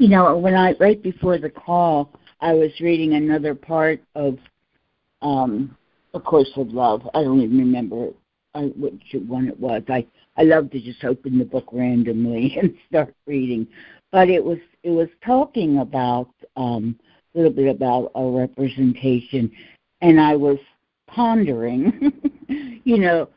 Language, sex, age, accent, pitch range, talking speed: English, female, 60-79, American, 130-170 Hz, 150 wpm